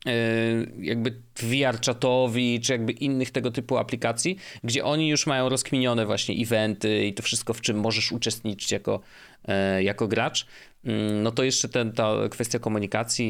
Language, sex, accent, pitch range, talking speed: Polish, male, native, 110-135 Hz, 150 wpm